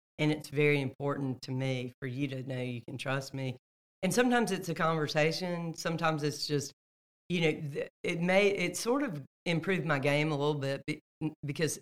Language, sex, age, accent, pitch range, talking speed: English, female, 50-69, American, 135-165 Hz, 185 wpm